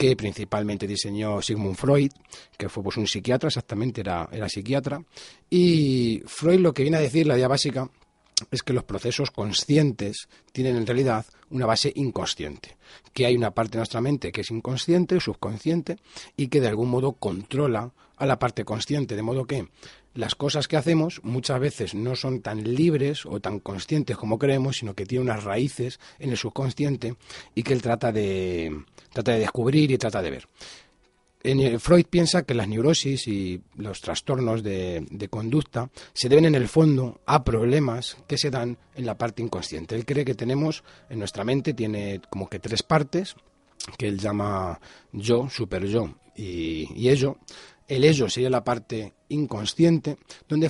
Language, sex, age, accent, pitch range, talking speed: Spanish, male, 40-59, Spanish, 105-140 Hz, 175 wpm